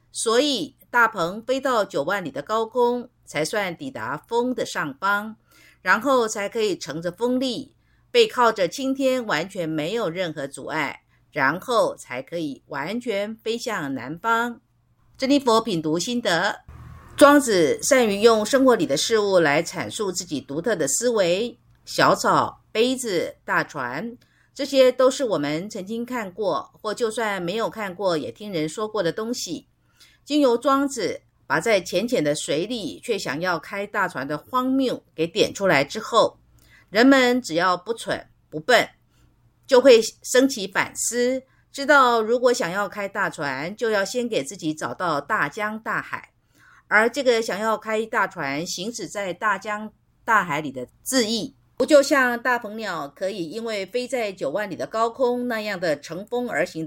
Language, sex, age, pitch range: Chinese, female, 50-69, 185-255 Hz